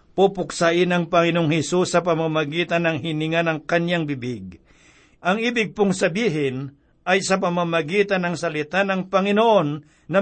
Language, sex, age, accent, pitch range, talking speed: Filipino, male, 60-79, native, 160-190 Hz, 135 wpm